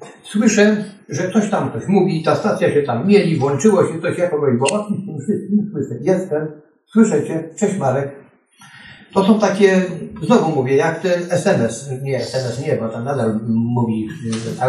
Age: 60-79